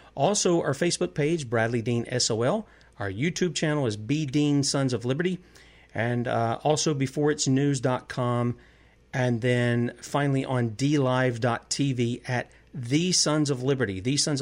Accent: American